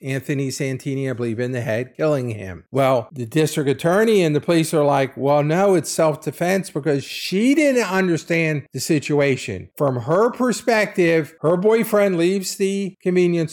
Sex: male